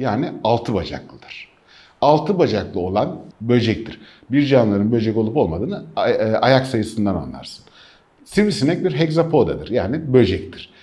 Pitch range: 100-155 Hz